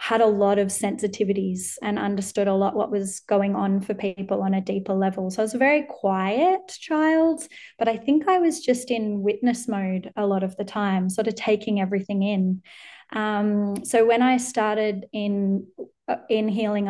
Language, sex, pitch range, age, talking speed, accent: English, female, 195-230 Hz, 20-39, 190 wpm, Australian